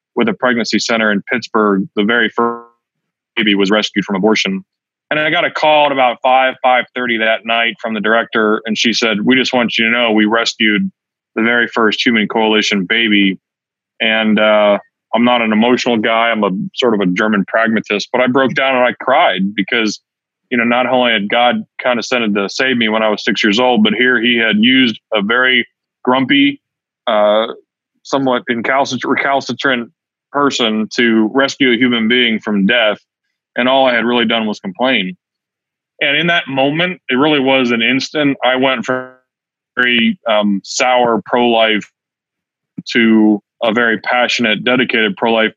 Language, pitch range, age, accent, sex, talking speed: English, 110-130 Hz, 30-49, American, male, 180 wpm